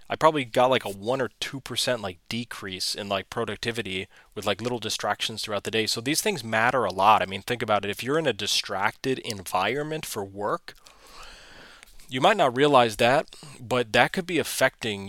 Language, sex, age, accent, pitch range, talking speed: English, male, 30-49, American, 105-135 Hz, 200 wpm